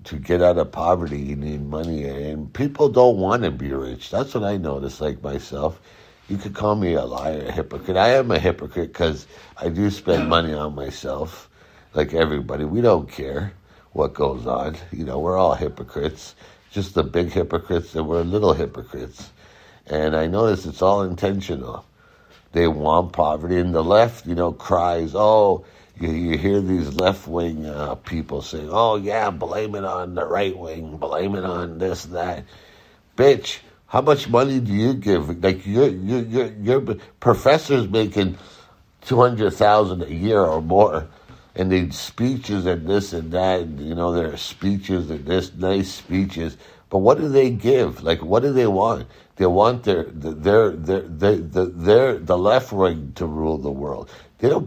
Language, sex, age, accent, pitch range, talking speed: English, male, 60-79, American, 80-100 Hz, 180 wpm